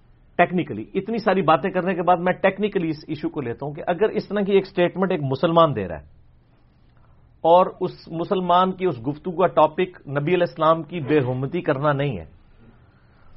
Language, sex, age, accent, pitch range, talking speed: English, male, 50-69, Indian, 150-200 Hz, 155 wpm